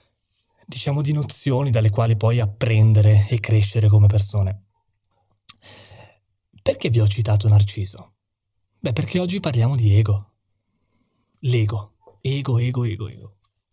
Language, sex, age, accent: Italian, male, 20-39, native